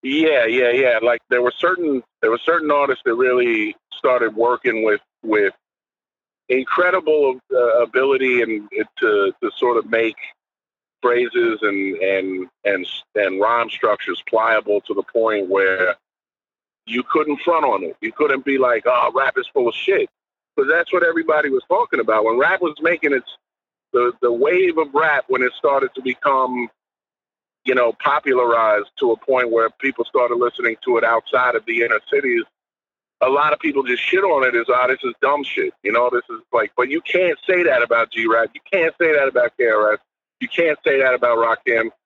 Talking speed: 185 wpm